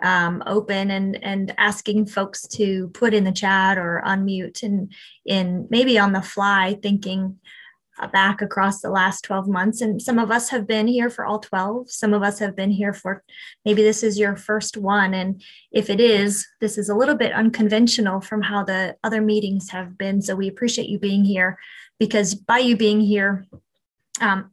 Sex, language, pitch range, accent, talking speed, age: female, English, 195-225 Hz, American, 190 wpm, 20-39